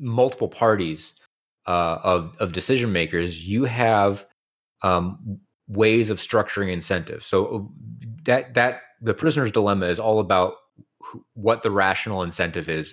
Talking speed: 135 wpm